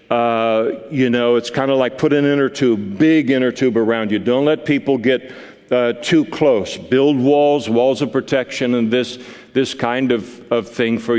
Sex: male